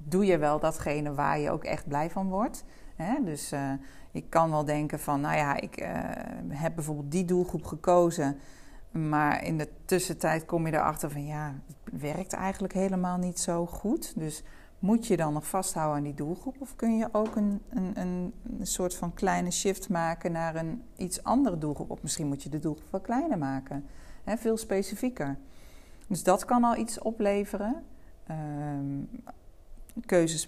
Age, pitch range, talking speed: 40-59, 150-200 Hz, 165 wpm